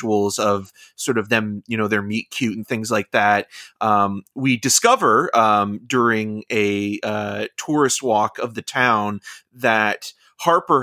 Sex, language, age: male, English, 30-49